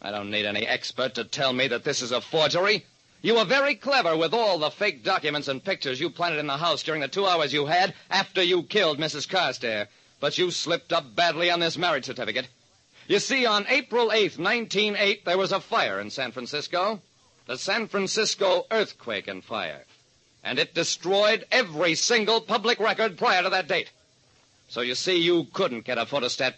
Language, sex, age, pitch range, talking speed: English, male, 50-69, 135-195 Hz, 195 wpm